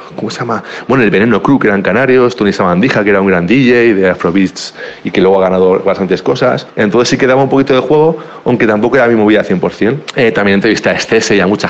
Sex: male